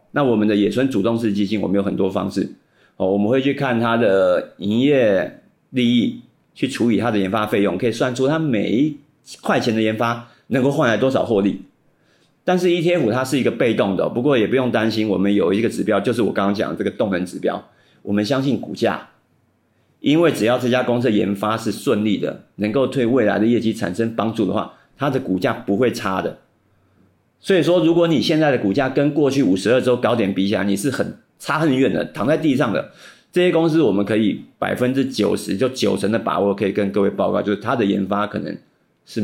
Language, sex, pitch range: Chinese, male, 105-135 Hz